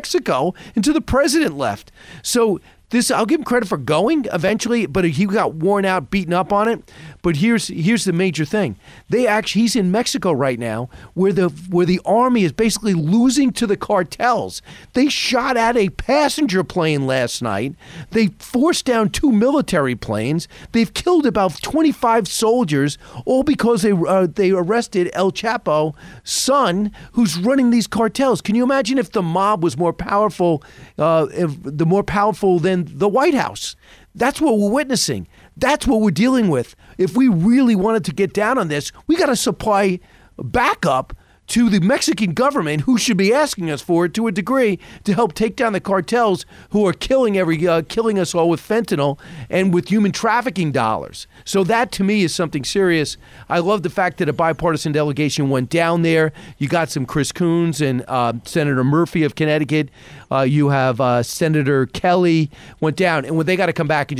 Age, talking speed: 40-59, 185 wpm